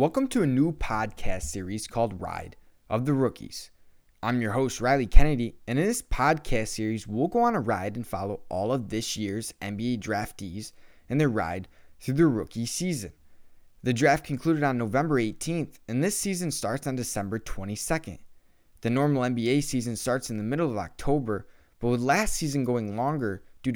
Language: English